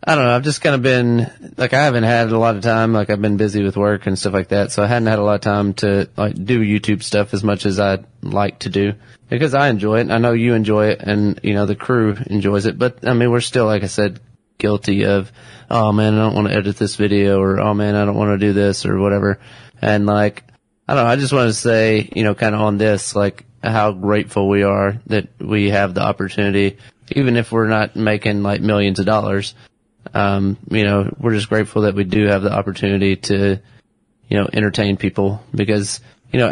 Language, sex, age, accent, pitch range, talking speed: English, male, 30-49, American, 100-115 Hz, 245 wpm